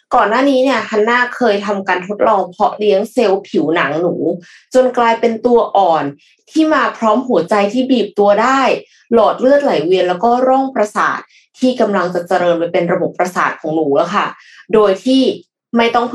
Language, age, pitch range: Thai, 20-39, 185-245 Hz